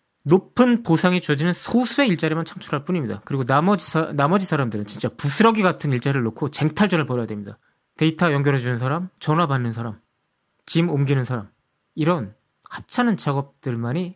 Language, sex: Korean, male